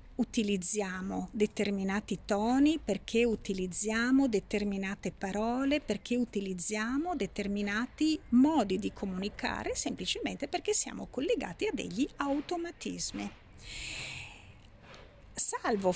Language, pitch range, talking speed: Italian, 200-290 Hz, 80 wpm